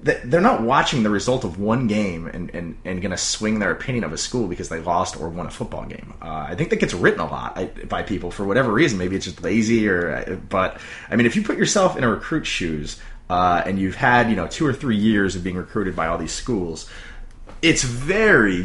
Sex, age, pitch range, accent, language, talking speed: male, 30-49, 85-120 Hz, American, English, 240 wpm